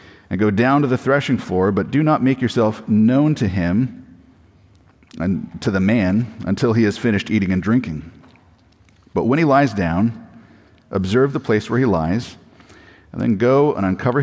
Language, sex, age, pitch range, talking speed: English, male, 40-59, 95-125 Hz, 175 wpm